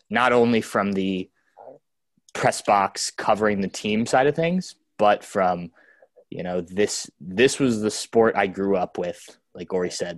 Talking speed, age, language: 165 wpm, 20-39, English